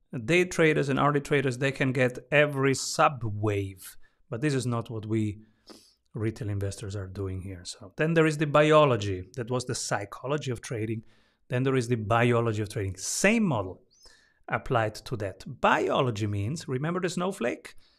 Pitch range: 110-145 Hz